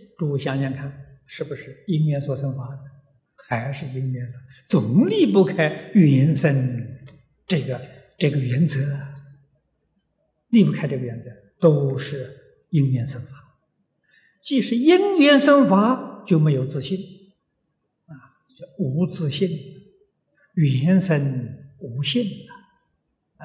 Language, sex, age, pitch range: Chinese, male, 60-79, 135-180 Hz